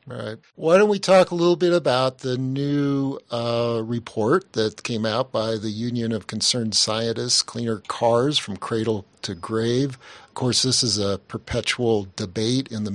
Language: English